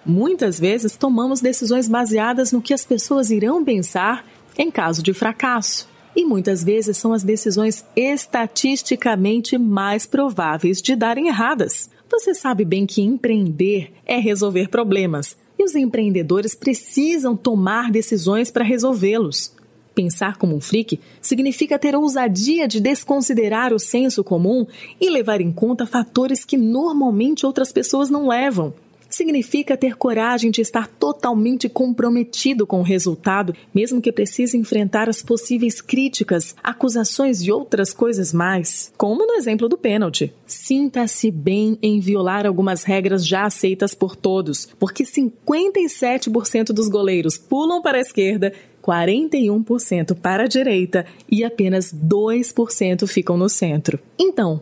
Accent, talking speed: Brazilian, 135 wpm